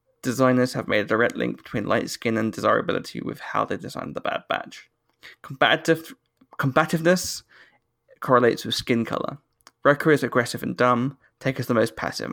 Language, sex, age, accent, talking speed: English, male, 20-39, British, 165 wpm